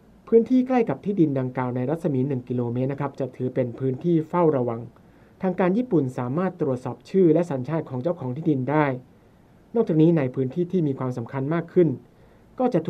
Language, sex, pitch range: Thai, male, 130-170 Hz